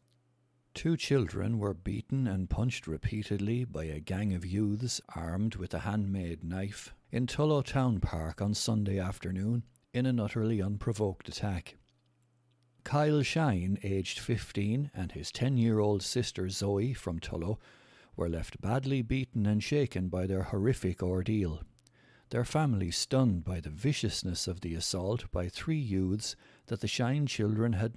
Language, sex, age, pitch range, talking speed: English, male, 60-79, 95-120 Hz, 145 wpm